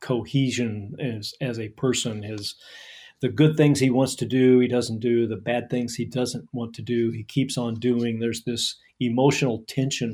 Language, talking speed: English, 190 wpm